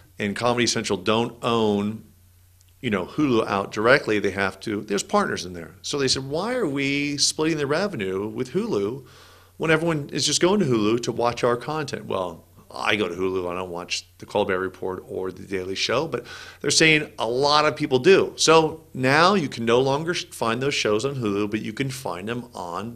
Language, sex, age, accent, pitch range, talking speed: English, male, 40-59, American, 105-140 Hz, 205 wpm